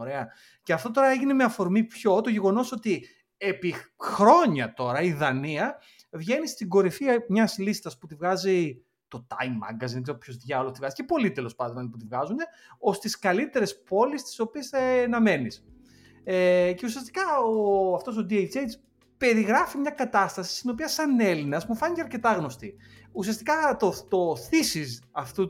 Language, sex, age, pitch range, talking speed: Greek, male, 30-49, 140-230 Hz, 170 wpm